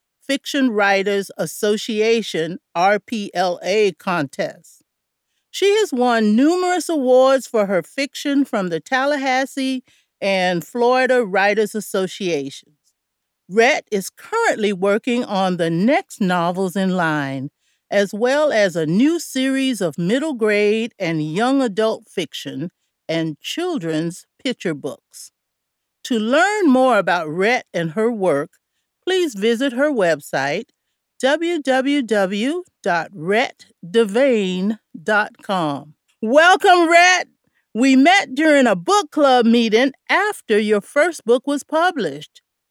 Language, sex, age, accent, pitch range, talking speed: English, female, 50-69, American, 200-290 Hz, 105 wpm